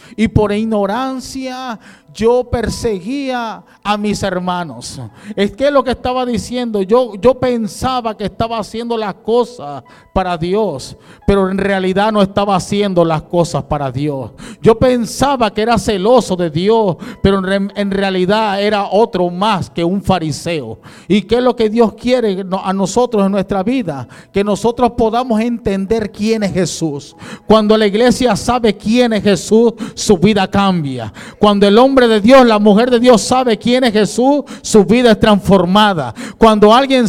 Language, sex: English, male